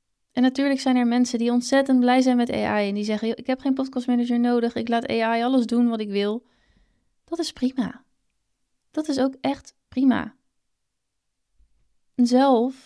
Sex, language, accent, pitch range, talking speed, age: female, Dutch, Dutch, 200-245 Hz, 170 wpm, 20-39